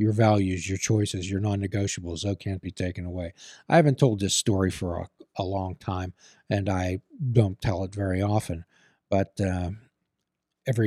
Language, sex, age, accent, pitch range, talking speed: English, male, 40-59, American, 95-115 Hz, 170 wpm